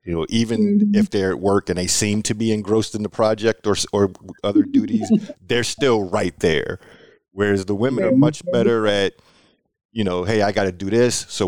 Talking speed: 210 wpm